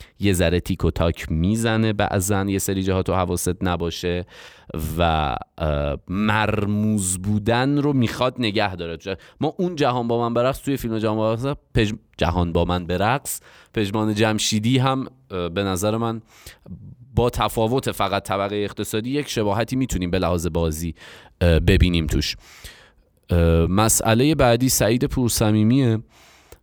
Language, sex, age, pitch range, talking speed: Persian, male, 30-49, 80-110 Hz, 125 wpm